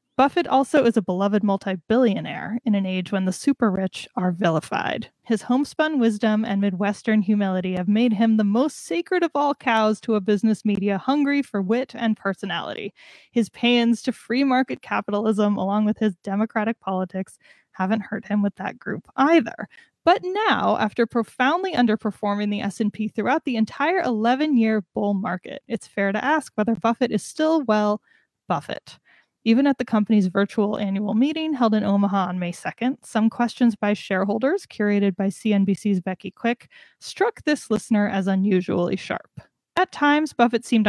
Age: 10-29